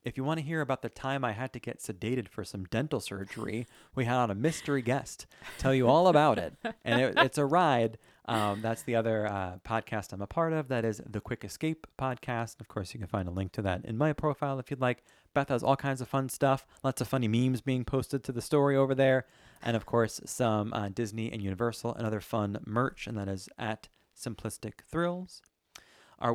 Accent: American